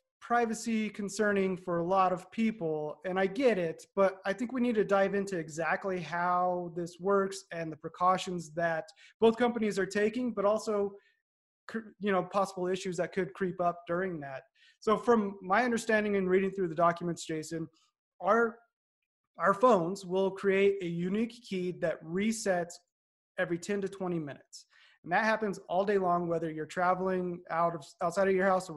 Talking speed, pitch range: 175 wpm, 170-200 Hz